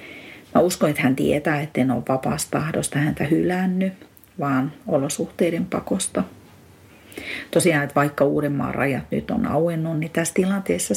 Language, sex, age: Finnish, female, 40-59